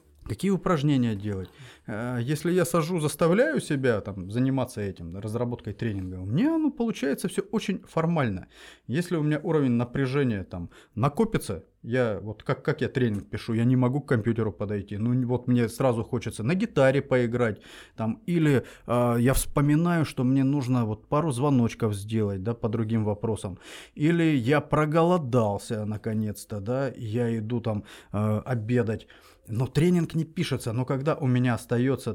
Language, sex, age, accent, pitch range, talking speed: Russian, male, 30-49, native, 110-145 Hz, 155 wpm